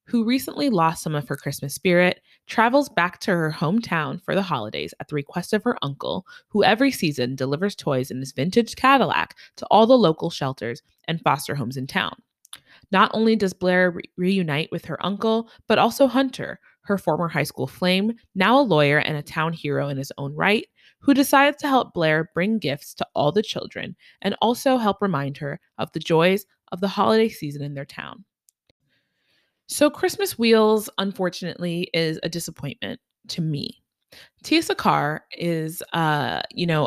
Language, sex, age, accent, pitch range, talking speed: English, female, 20-39, American, 150-230 Hz, 180 wpm